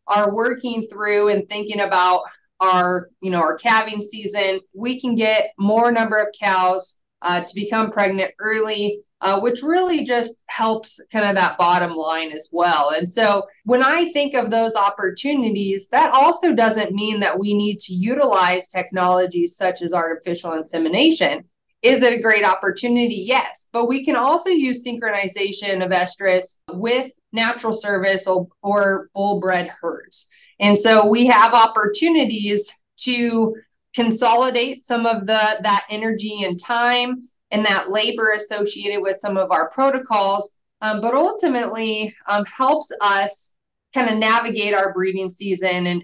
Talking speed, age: 150 wpm, 30-49